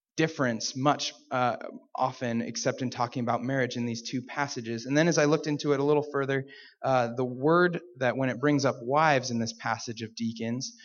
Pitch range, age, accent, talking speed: 125-145 Hz, 20-39, American, 205 wpm